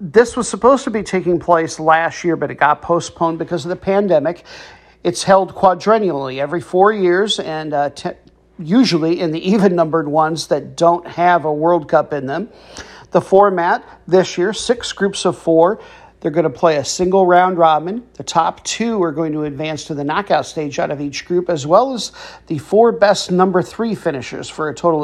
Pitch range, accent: 160-190 Hz, American